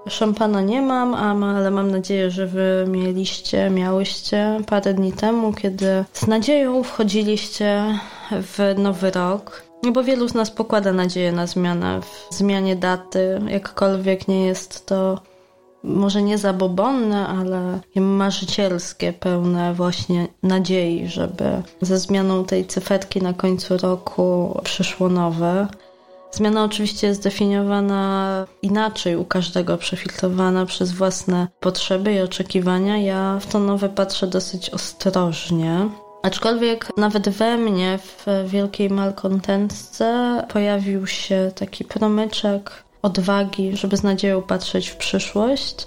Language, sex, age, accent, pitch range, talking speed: Polish, female, 20-39, native, 185-210 Hz, 120 wpm